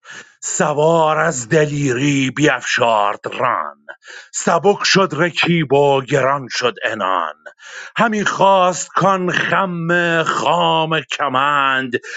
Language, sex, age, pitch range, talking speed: Persian, male, 50-69, 135-185 Hz, 90 wpm